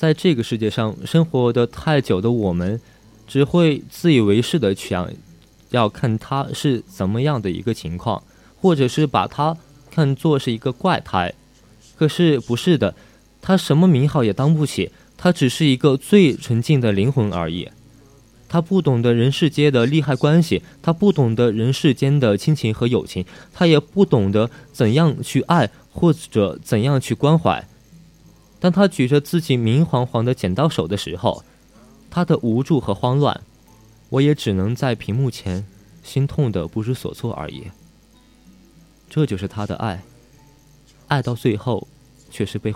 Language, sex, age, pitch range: Chinese, male, 20-39, 110-150 Hz